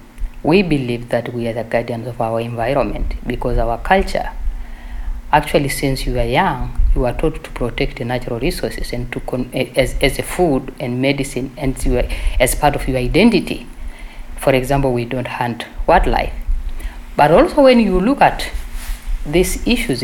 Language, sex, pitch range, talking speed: English, female, 115-150 Hz, 160 wpm